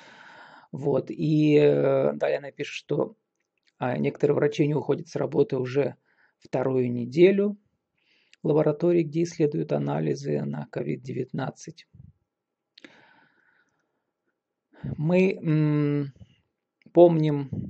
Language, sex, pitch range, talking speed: Russian, male, 135-190 Hz, 80 wpm